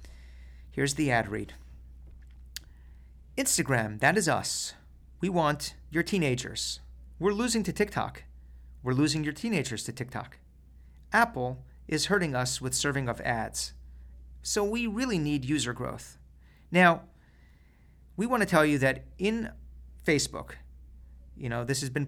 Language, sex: English, male